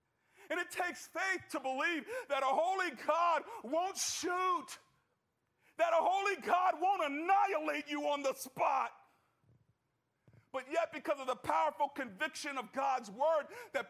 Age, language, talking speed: 50-69, English, 145 wpm